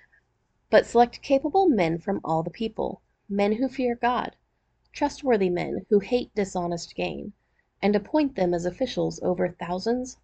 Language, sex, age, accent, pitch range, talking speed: English, female, 30-49, American, 180-245 Hz, 145 wpm